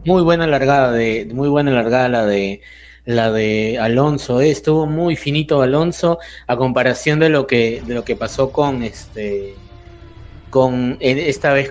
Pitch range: 120-160 Hz